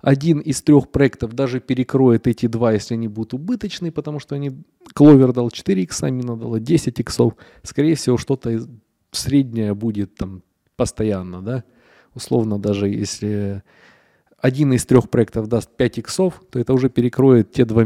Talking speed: 160 wpm